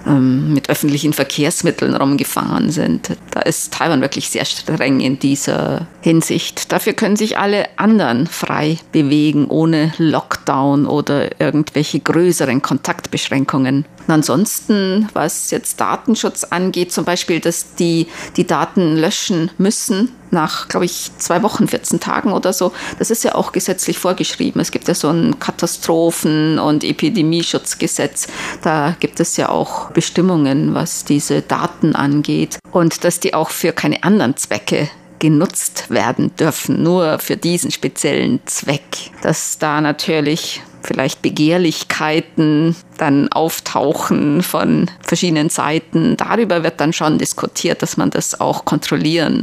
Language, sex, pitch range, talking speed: German, female, 150-180 Hz, 135 wpm